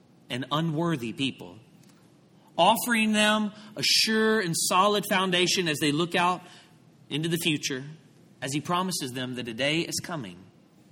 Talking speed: 145 wpm